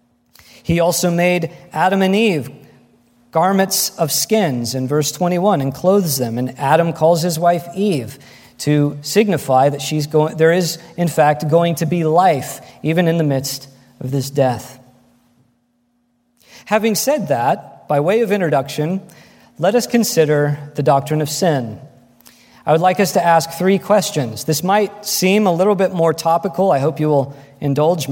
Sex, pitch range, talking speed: male, 130-180 Hz, 160 wpm